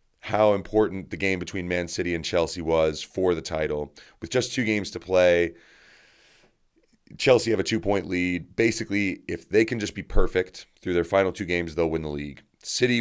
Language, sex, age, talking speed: English, male, 30-49, 190 wpm